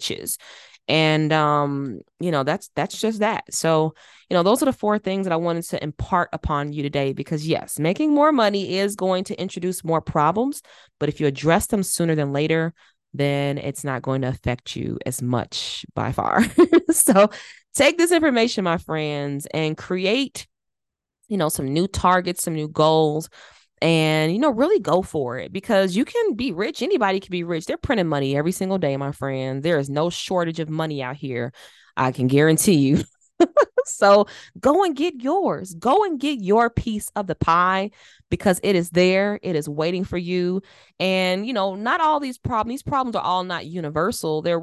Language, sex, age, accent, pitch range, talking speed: English, female, 20-39, American, 150-195 Hz, 190 wpm